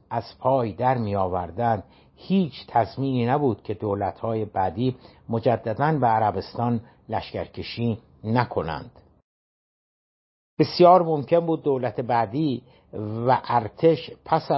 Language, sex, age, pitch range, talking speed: Persian, male, 60-79, 110-140 Hz, 100 wpm